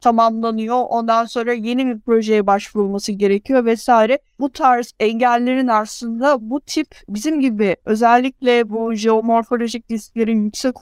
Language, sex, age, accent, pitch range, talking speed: Turkish, female, 50-69, native, 225-265 Hz, 120 wpm